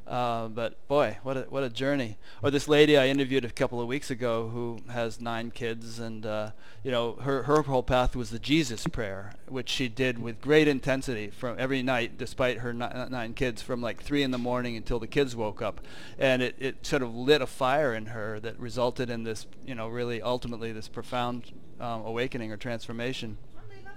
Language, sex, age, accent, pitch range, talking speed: English, male, 30-49, American, 115-135 Hz, 210 wpm